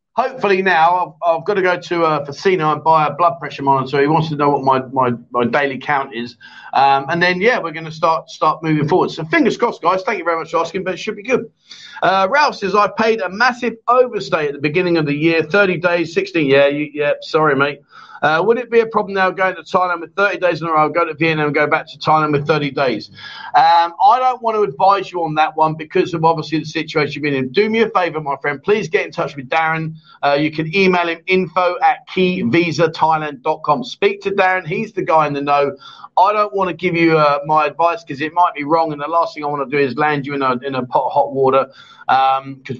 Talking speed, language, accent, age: 260 wpm, English, British, 40-59